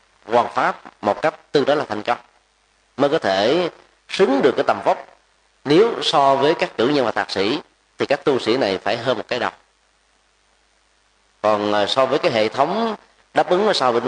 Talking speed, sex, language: 200 wpm, male, Vietnamese